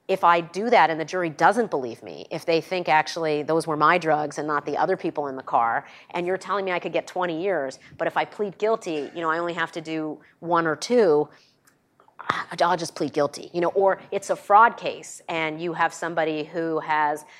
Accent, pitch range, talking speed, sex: American, 155-180 Hz, 230 wpm, female